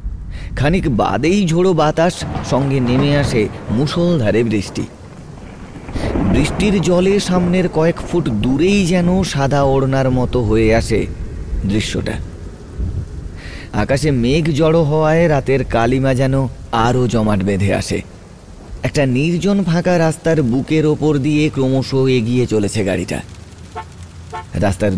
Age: 30-49